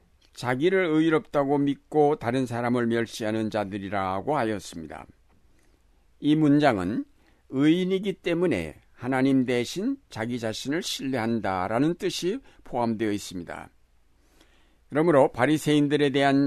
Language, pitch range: Korean, 105-140 Hz